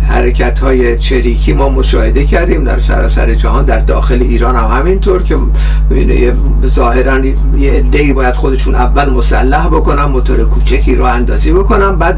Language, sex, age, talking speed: Persian, male, 60-79, 155 wpm